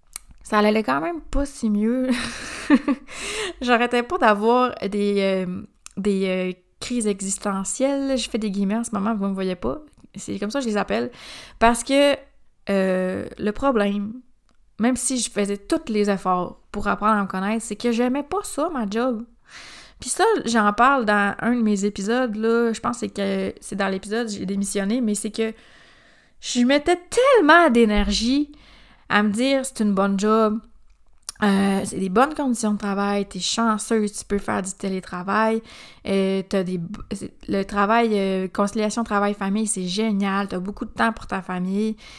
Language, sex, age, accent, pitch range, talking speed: French, female, 20-39, Canadian, 205-255 Hz, 170 wpm